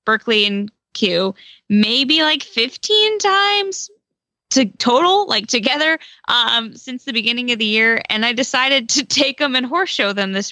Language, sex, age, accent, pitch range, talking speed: English, female, 20-39, American, 210-275 Hz, 165 wpm